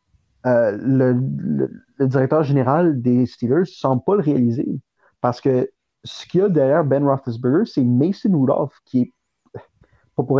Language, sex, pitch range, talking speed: French, male, 130-170 Hz, 160 wpm